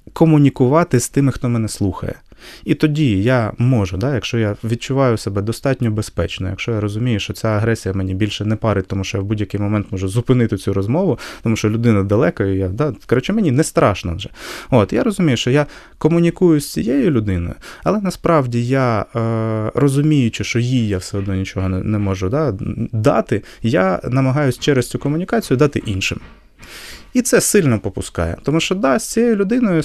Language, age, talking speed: Ukrainian, 20-39, 180 wpm